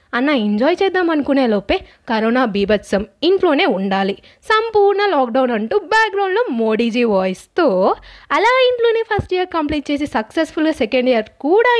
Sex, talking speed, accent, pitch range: female, 125 wpm, native, 235-365 Hz